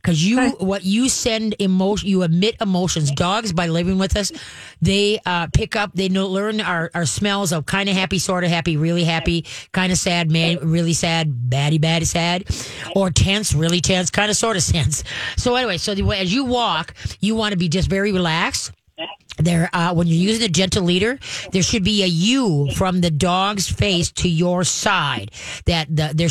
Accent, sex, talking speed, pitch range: American, female, 200 wpm, 155-190 Hz